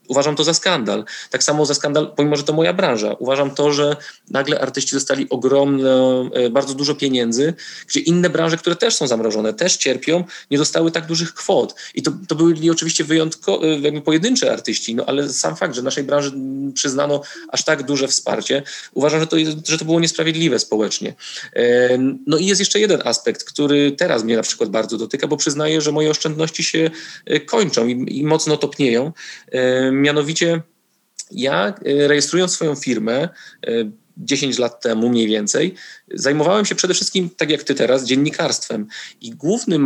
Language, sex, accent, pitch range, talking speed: Polish, male, native, 135-165 Hz, 165 wpm